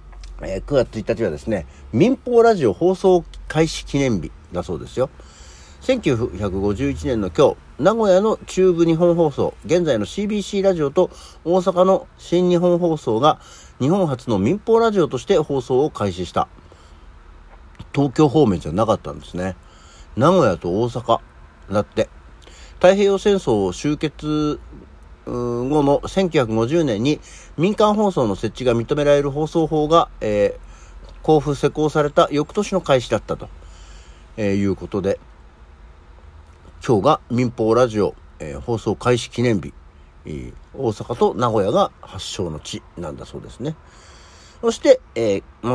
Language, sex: Japanese, male